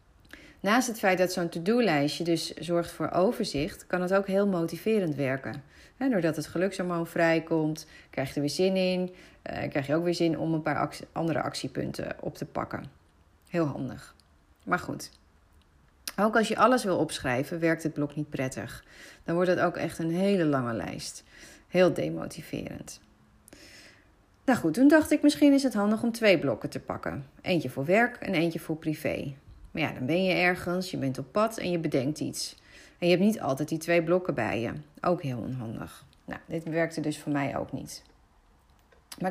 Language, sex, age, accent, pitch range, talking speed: Dutch, female, 30-49, Dutch, 150-195 Hz, 185 wpm